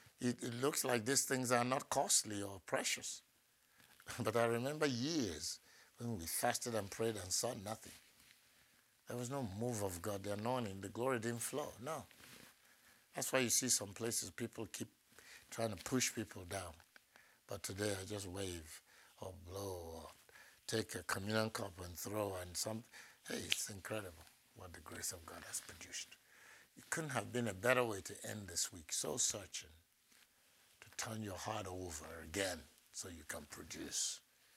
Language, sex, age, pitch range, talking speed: English, male, 60-79, 95-120 Hz, 170 wpm